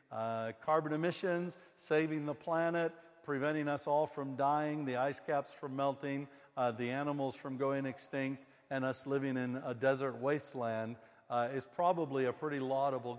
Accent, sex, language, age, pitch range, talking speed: American, male, English, 60-79, 130-160 Hz, 160 wpm